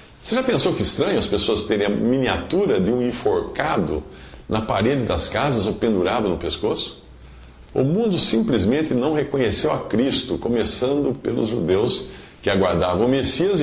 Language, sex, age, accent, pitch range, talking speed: Portuguese, male, 50-69, Brazilian, 85-125 Hz, 155 wpm